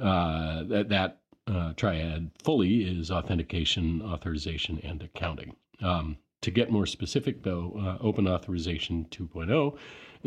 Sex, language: male, English